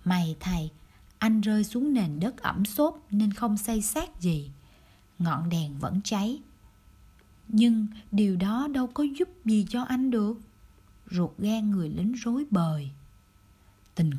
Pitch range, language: 140-230 Hz, Vietnamese